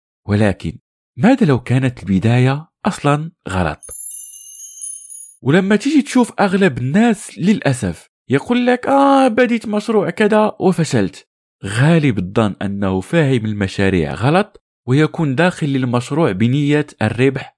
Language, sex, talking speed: Arabic, male, 105 wpm